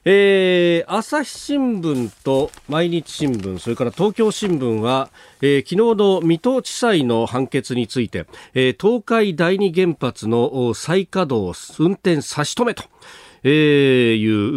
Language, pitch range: Japanese, 110-170 Hz